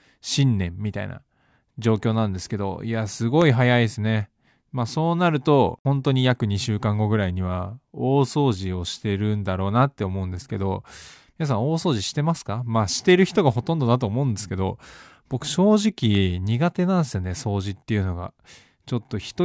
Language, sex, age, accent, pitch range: Japanese, male, 20-39, native, 100-140 Hz